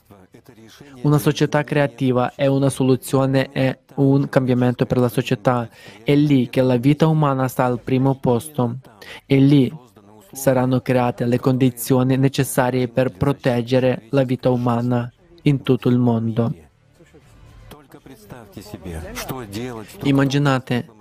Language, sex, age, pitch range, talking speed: Italian, male, 20-39, 125-135 Hz, 110 wpm